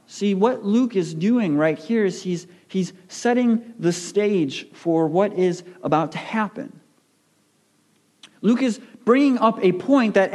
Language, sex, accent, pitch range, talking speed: English, male, American, 195-265 Hz, 150 wpm